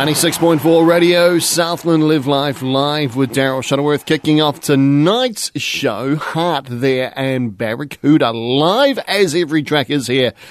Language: English